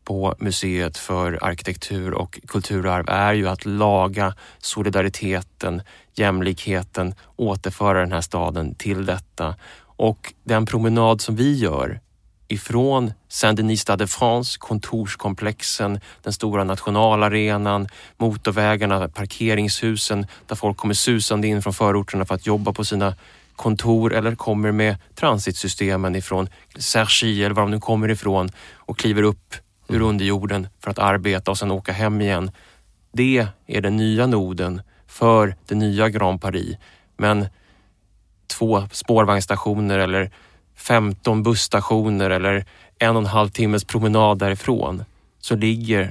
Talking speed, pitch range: 125 wpm, 95-110 Hz